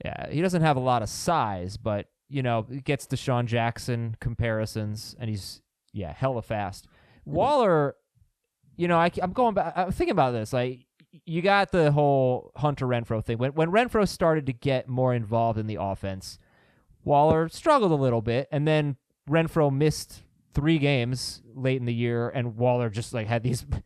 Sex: male